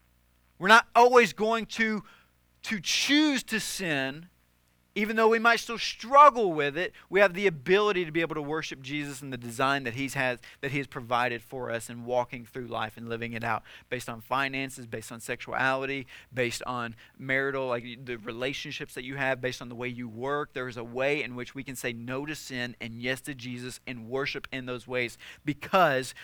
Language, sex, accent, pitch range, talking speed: English, male, American, 120-180 Hz, 205 wpm